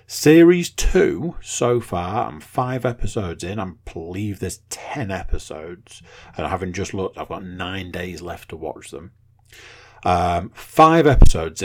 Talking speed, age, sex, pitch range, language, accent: 150 wpm, 40-59, male, 90-115 Hz, English, British